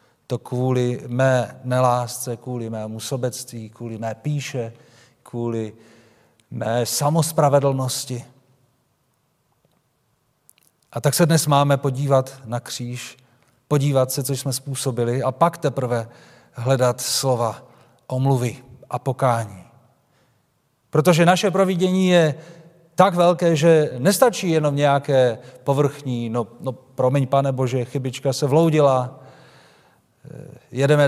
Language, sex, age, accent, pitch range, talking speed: Czech, male, 40-59, native, 120-140 Hz, 105 wpm